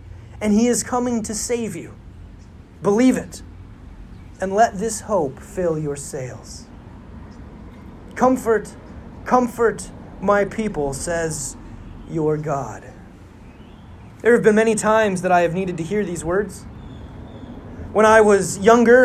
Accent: American